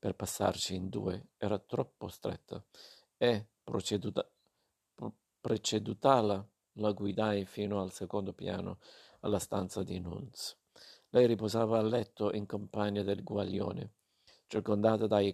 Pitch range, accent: 105-115 Hz, native